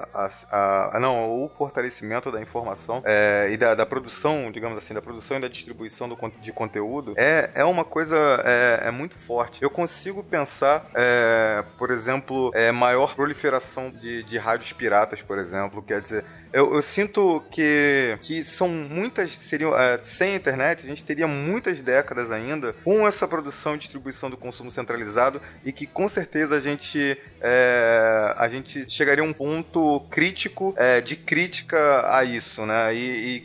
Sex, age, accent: male, 20-39, Brazilian